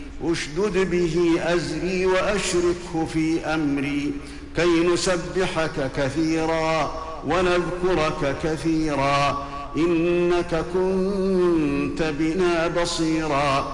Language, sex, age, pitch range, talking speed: Arabic, male, 50-69, 155-180 Hz, 65 wpm